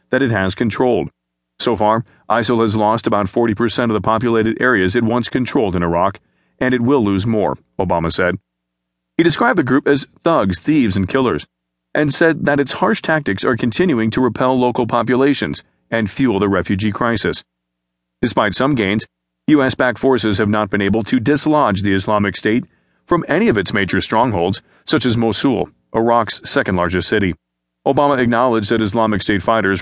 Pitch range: 95-125 Hz